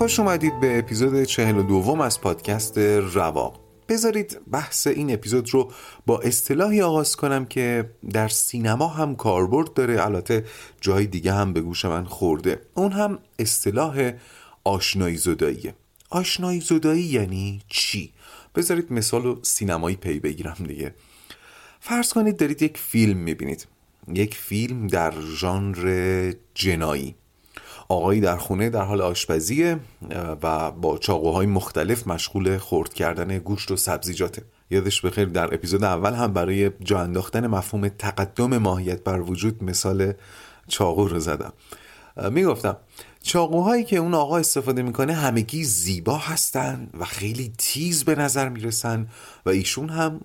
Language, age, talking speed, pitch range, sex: Persian, 30-49, 135 wpm, 95-135 Hz, male